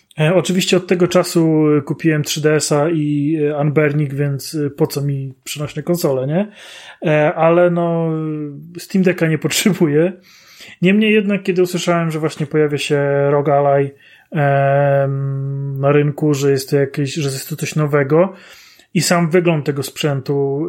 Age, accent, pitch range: 30-49, native, 145-175 Hz